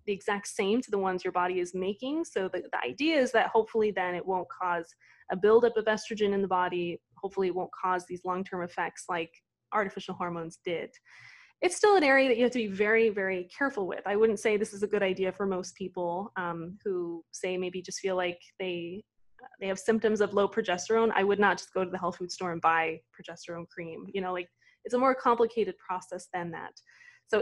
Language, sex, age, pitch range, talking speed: English, female, 20-39, 180-220 Hz, 225 wpm